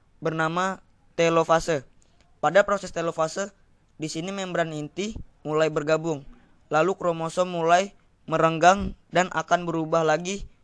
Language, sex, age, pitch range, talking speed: Indonesian, female, 20-39, 125-175 Hz, 105 wpm